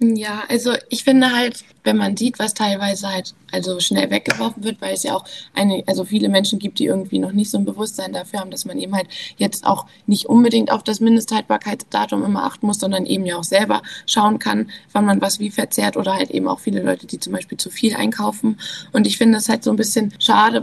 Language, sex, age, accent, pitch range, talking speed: German, female, 20-39, German, 190-225 Hz, 235 wpm